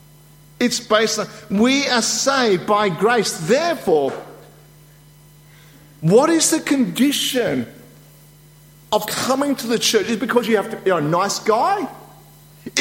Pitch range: 155-240 Hz